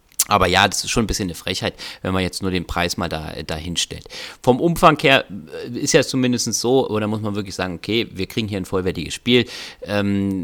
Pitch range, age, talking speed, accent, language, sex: 90-100 Hz, 30-49, 225 wpm, German, German, male